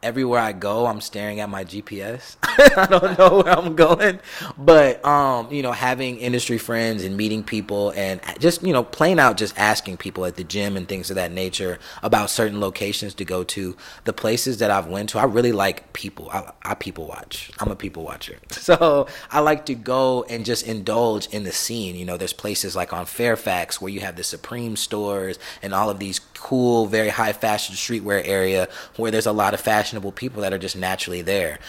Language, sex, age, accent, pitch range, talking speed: English, male, 20-39, American, 95-115 Hz, 210 wpm